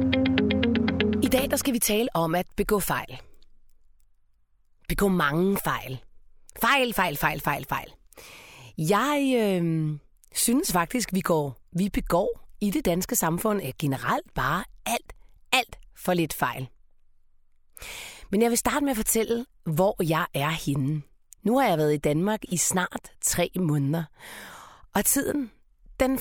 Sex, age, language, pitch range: female, 30-49, Danish, 160-220 Hz